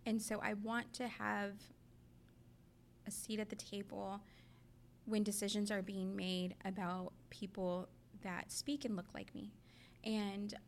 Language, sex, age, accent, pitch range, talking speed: English, female, 20-39, American, 190-215 Hz, 140 wpm